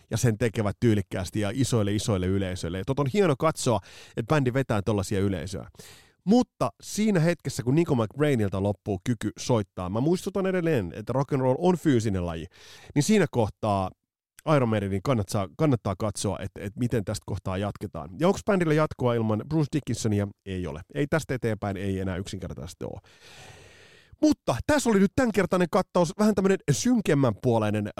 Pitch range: 100-155 Hz